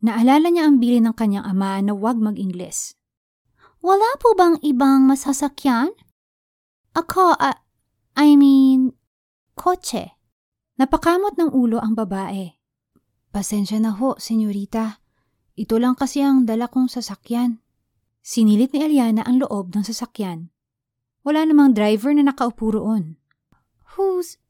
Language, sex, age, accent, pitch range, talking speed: Filipino, female, 20-39, native, 200-270 Hz, 120 wpm